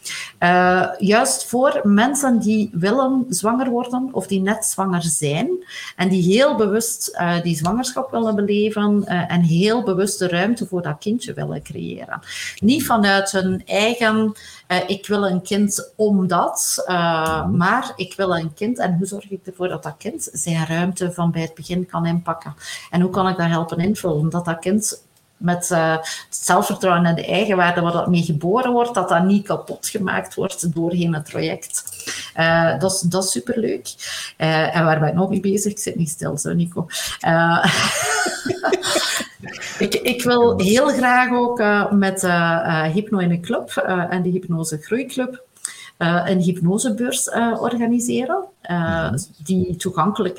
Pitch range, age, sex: 170-215 Hz, 50-69, female